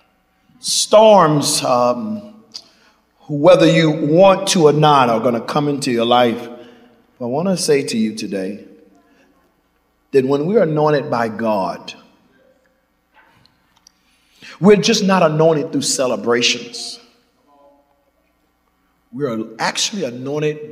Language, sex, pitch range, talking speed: English, male, 120-180 Hz, 105 wpm